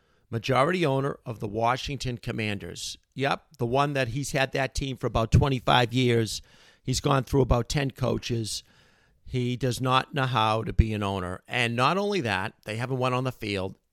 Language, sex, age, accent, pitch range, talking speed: English, male, 50-69, American, 115-150 Hz, 185 wpm